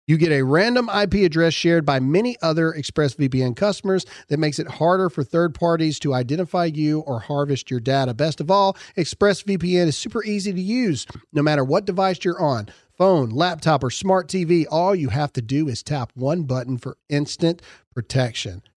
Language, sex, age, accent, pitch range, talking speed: English, male, 40-59, American, 140-200 Hz, 185 wpm